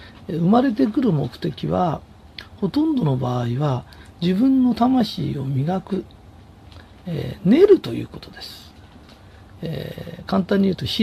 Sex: male